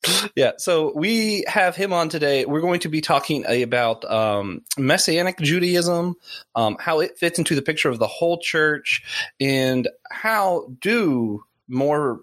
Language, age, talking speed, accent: English, 20-39, 150 wpm, American